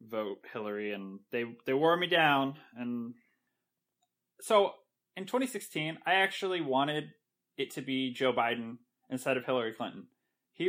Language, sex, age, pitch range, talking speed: English, male, 20-39, 125-160 Hz, 140 wpm